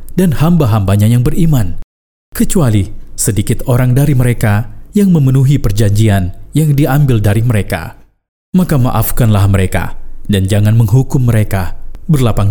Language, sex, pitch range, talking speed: Indonesian, male, 100-130 Hz, 115 wpm